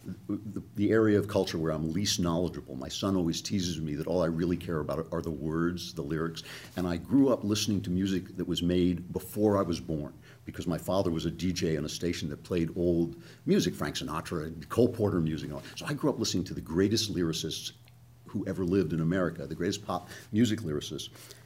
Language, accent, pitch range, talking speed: English, American, 85-120 Hz, 220 wpm